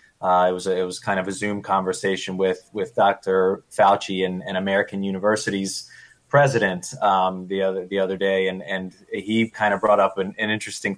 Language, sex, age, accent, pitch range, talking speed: English, male, 20-39, American, 95-110 Hz, 195 wpm